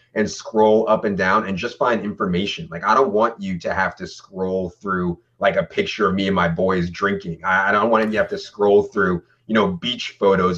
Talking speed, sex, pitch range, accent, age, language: 240 wpm, male, 90-110 Hz, American, 30-49, English